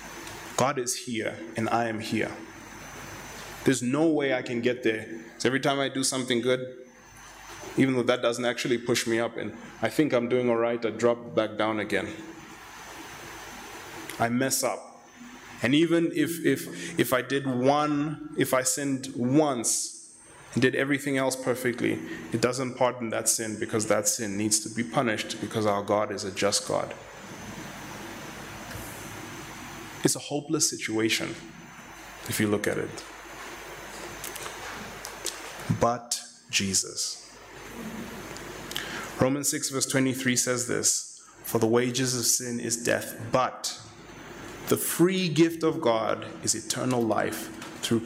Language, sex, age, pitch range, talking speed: English, male, 20-39, 110-130 Hz, 140 wpm